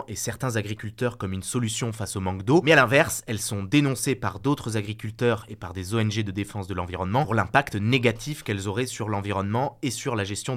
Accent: French